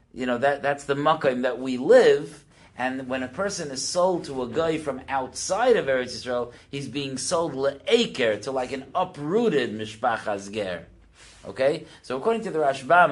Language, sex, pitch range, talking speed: English, male, 110-140 Hz, 170 wpm